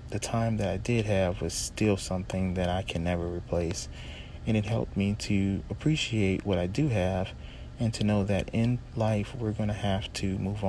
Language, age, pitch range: English, 40-59, 95-105 Hz